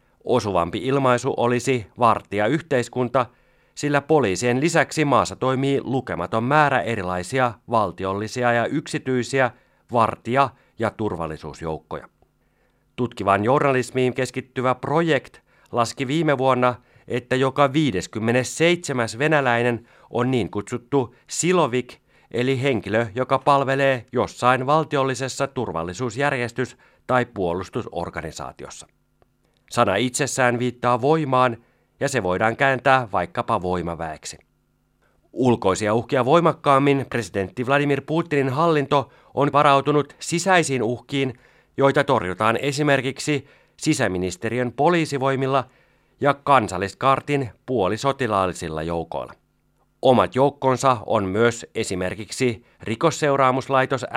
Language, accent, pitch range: Finnish, native, 115-140 Hz